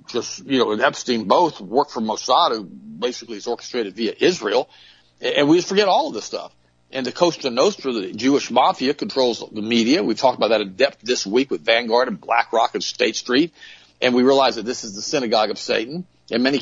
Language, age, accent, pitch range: English, 50-69, American, 115-155 Hz